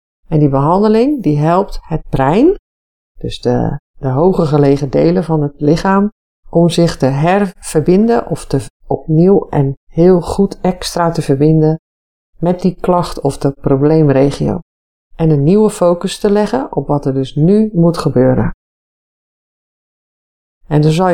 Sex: female